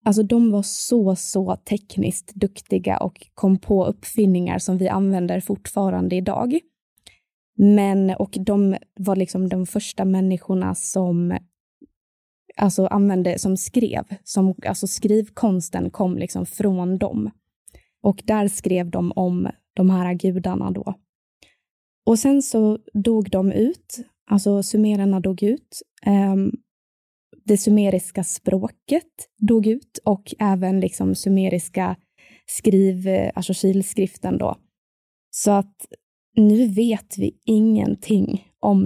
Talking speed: 115 wpm